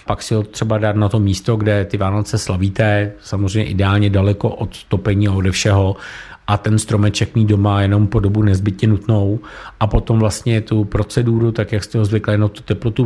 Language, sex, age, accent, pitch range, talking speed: Czech, male, 50-69, native, 100-110 Hz, 200 wpm